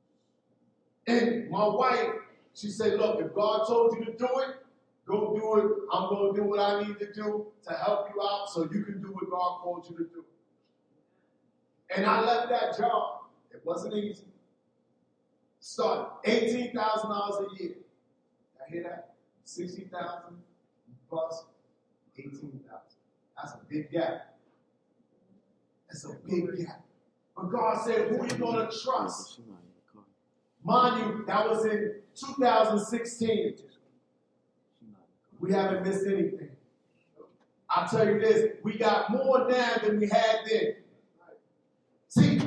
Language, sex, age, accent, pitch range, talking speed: English, male, 40-59, American, 205-265 Hz, 140 wpm